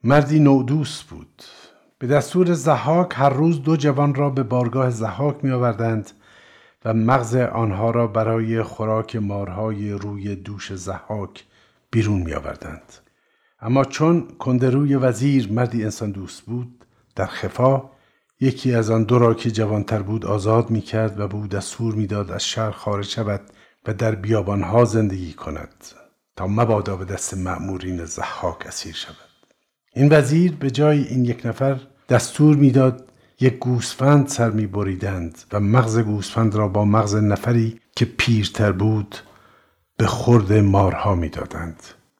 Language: Persian